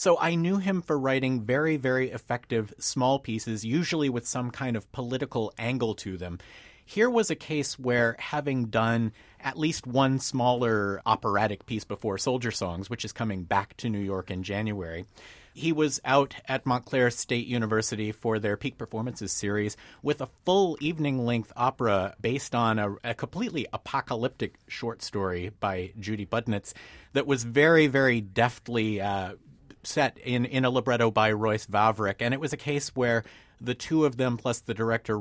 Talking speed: 170 wpm